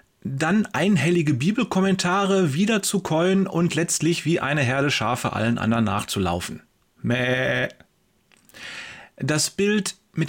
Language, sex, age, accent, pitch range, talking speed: German, male, 30-49, German, 130-185 Hz, 110 wpm